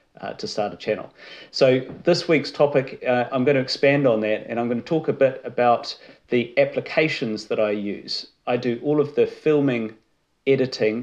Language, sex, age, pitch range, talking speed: English, male, 40-59, 110-130 Hz, 195 wpm